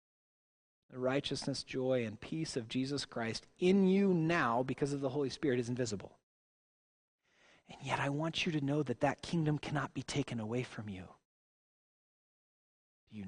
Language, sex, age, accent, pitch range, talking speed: English, male, 30-49, American, 120-160 Hz, 165 wpm